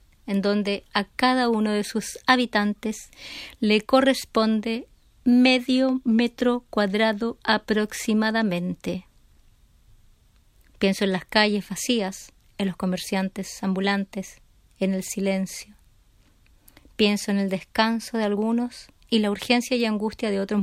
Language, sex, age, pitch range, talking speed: Spanish, female, 30-49, 195-220 Hz, 115 wpm